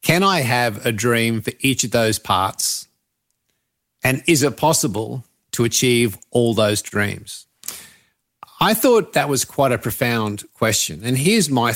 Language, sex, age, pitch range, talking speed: English, male, 50-69, 110-135 Hz, 155 wpm